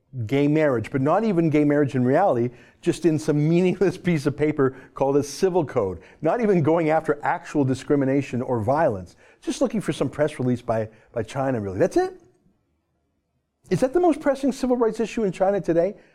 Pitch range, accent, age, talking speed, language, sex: 115-165 Hz, American, 50-69, 190 wpm, English, male